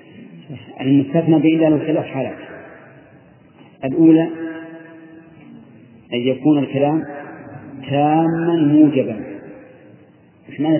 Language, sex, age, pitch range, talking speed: Arabic, male, 40-59, 135-165 Hz, 60 wpm